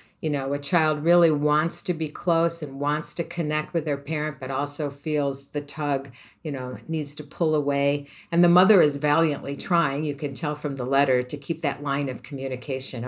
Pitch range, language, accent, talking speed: 135-165 Hz, English, American, 205 wpm